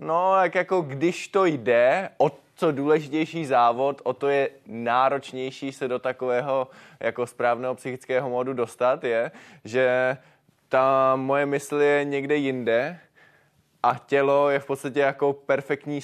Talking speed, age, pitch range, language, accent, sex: 140 wpm, 20-39, 120-140 Hz, Czech, native, male